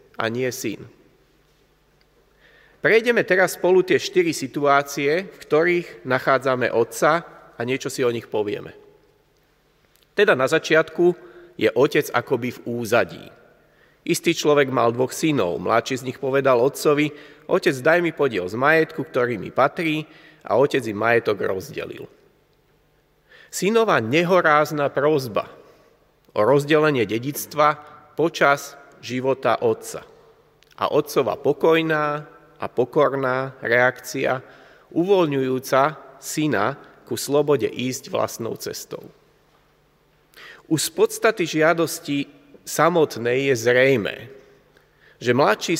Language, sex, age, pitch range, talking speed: Slovak, male, 40-59, 135-175 Hz, 105 wpm